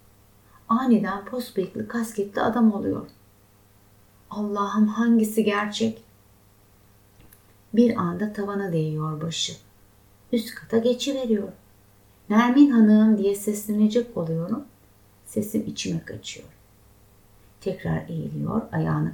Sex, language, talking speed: female, Turkish, 90 wpm